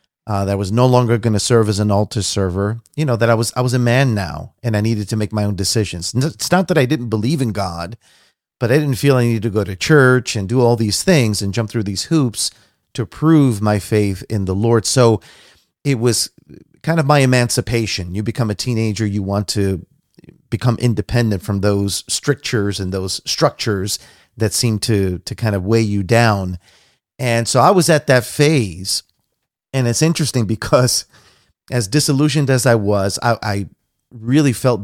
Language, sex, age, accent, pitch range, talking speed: English, male, 40-59, American, 105-125 Hz, 200 wpm